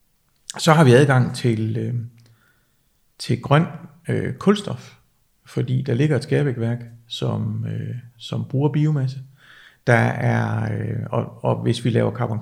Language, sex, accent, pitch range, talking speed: Danish, male, native, 115-145 Hz, 110 wpm